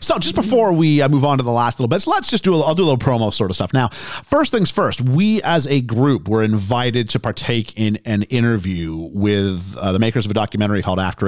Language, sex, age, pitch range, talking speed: English, male, 40-59, 100-140 Hz, 250 wpm